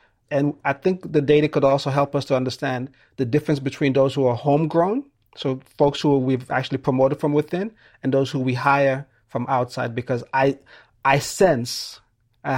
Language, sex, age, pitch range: English, male, 30-49, 130-150 Hz